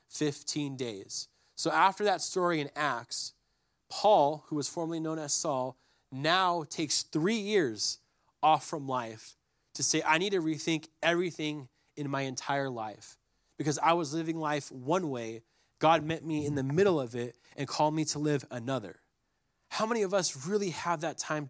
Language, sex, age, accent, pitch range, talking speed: English, male, 20-39, American, 140-165 Hz, 175 wpm